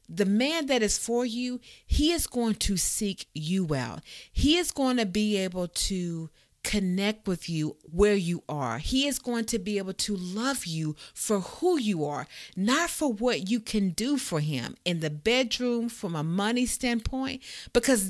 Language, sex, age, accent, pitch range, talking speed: English, female, 40-59, American, 175-245 Hz, 180 wpm